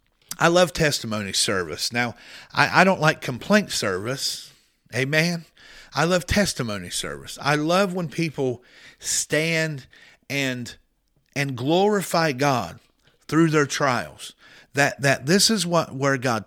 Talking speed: 130 wpm